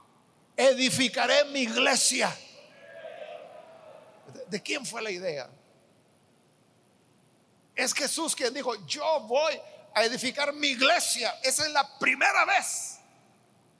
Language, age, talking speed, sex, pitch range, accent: Spanish, 50-69, 100 wpm, male, 255-335 Hz, Mexican